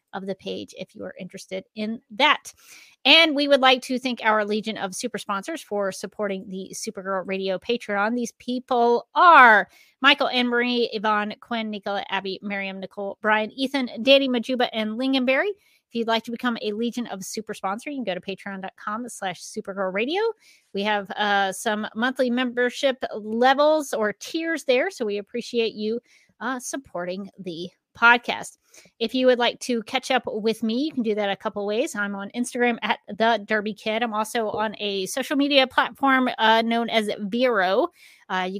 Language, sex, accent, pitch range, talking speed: English, female, American, 205-255 Hz, 180 wpm